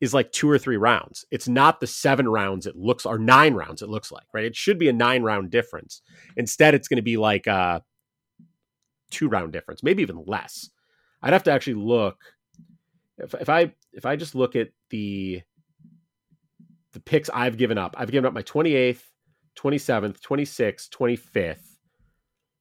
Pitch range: 110-155 Hz